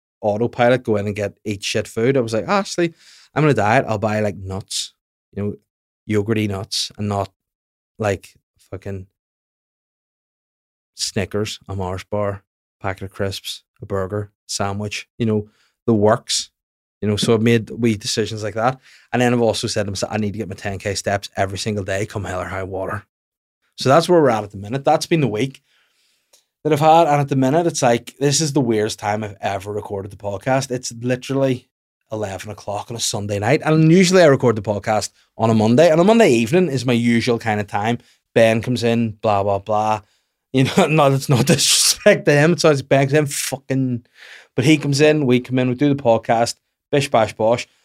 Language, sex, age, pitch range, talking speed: English, male, 20-39, 105-135 Hz, 205 wpm